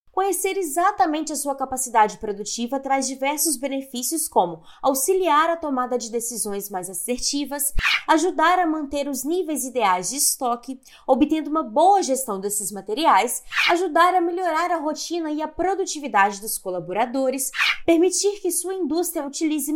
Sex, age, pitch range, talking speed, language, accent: female, 20-39, 265-355 Hz, 140 wpm, Portuguese, Brazilian